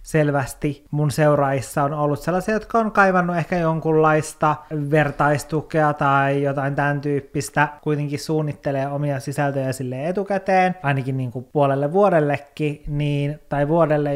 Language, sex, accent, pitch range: Finnish, male, native, 135-155 Hz